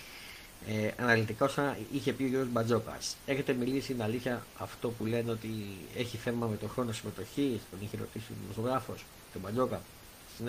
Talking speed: 170 wpm